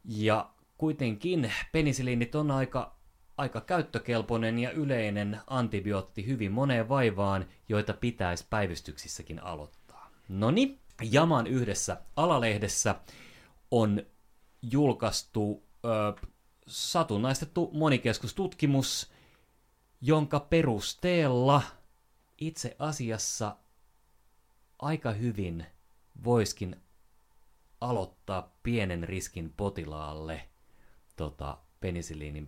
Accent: native